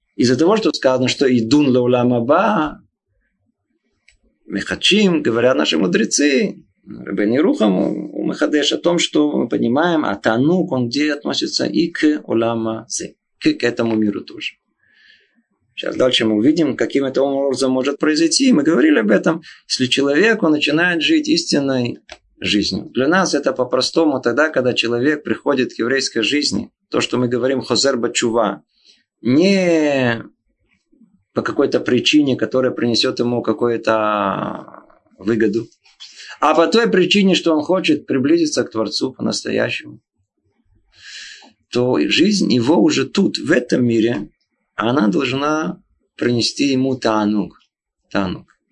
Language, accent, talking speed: Russian, native, 130 wpm